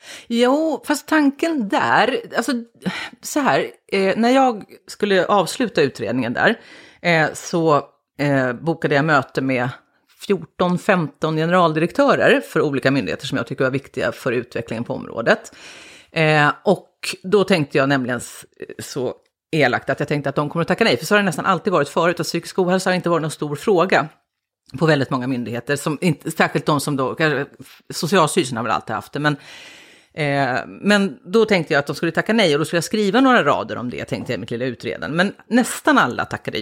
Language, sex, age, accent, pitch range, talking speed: English, female, 40-59, Swedish, 140-200 Hz, 185 wpm